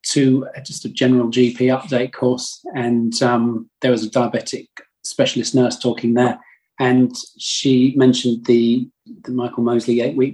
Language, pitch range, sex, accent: English, 115-130 Hz, male, British